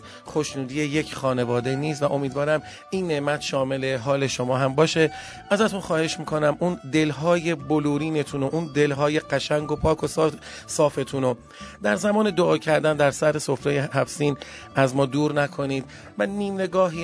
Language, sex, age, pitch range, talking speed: Persian, male, 30-49, 135-160 Hz, 150 wpm